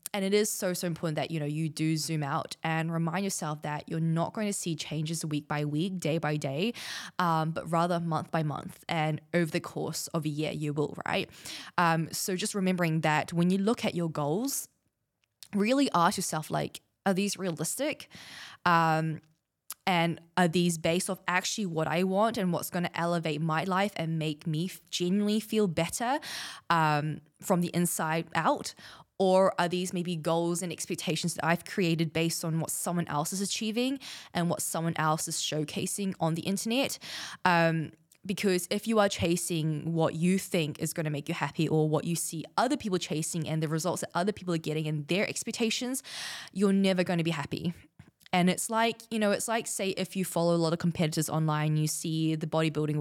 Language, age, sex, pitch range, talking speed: English, 10-29, female, 160-190 Hz, 195 wpm